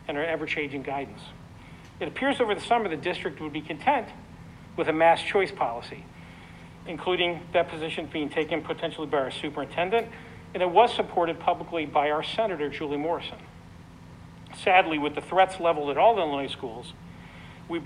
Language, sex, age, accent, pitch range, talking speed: English, male, 50-69, American, 145-185 Hz, 165 wpm